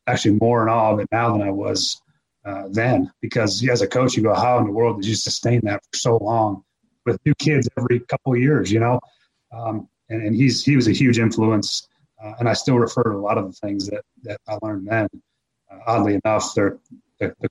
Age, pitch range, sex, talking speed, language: 30-49, 105-120 Hz, male, 235 wpm, English